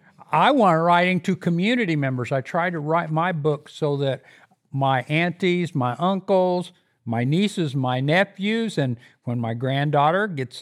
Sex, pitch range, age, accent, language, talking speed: male, 145-190 Hz, 50-69, American, English, 155 wpm